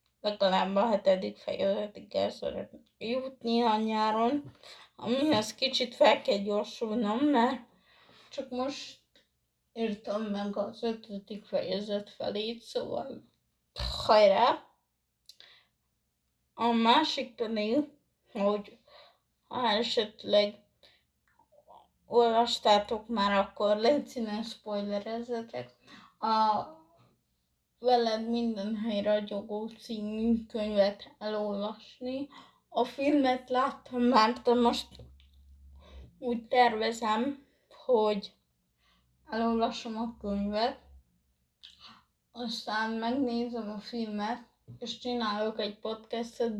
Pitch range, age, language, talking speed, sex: 205-240 Hz, 20-39, Hungarian, 80 wpm, female